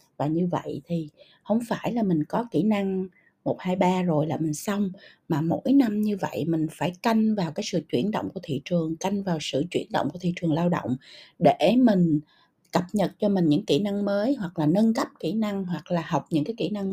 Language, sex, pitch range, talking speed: Vietnamese, female, 160-210 Hz, 240 wpm